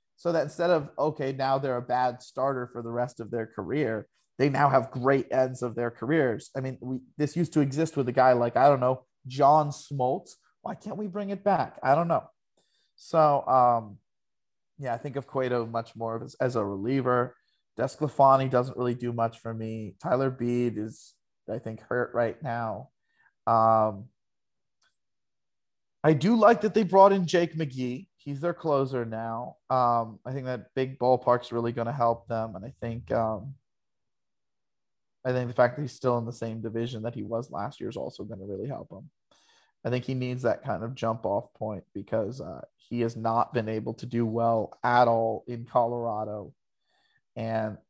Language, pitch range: English, 115-135 Hz